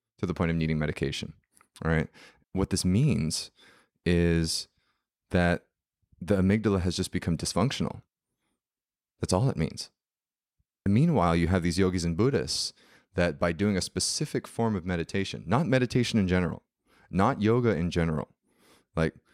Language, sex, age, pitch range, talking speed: English, male, 30-49, 85-105 Hz, 145 wpm